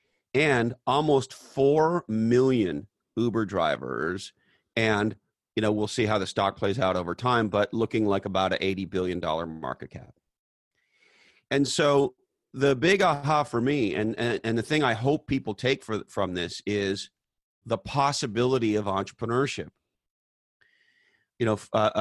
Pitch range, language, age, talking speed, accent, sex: 95-115 Hz, English, 40-59, 150 wpm, American, male